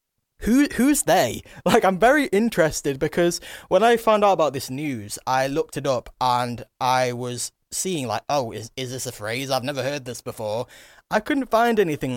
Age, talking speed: 20-39, 190 wpm